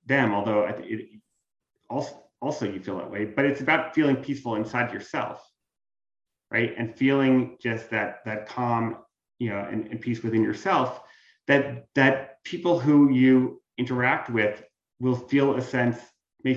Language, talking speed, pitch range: English, 150 wpm, 110-140 Hz